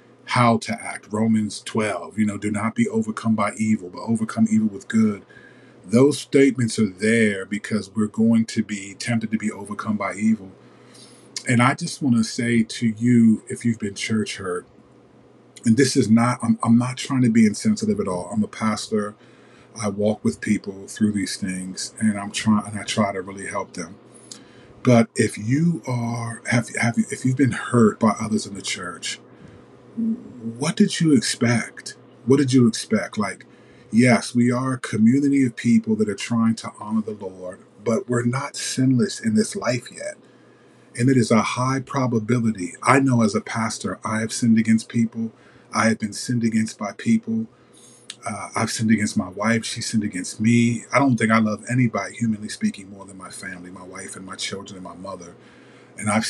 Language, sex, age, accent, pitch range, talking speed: English, male, 30-49, American, 105-130 Hz, 190 wpm